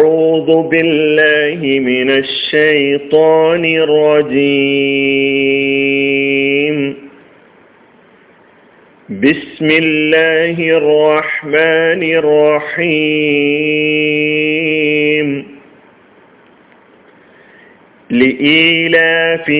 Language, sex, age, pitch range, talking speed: Malayalam, male, 40-59, 140-165 Hz, 30 wpm